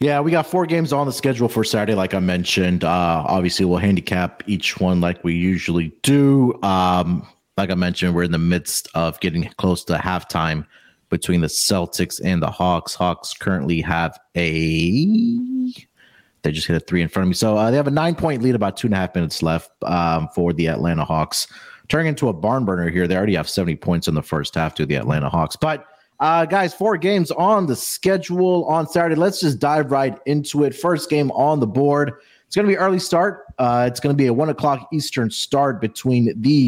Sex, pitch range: male, 90-145 Hz